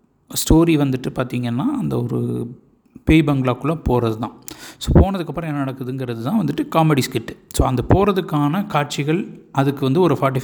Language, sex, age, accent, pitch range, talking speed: Tamil, male, 50-69, native, 115-155 Hz, 145 wpm